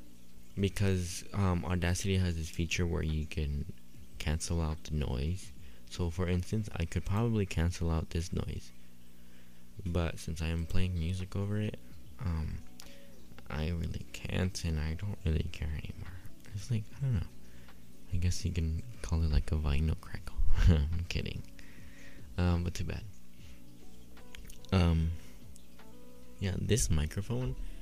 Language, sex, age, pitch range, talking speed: English, male, 20-39, 70-95 Hz, 140 wpm